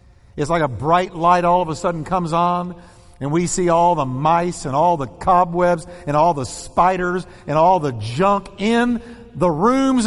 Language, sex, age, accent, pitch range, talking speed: English, male, 50-69, American, 145-205 Hz, 190 wpm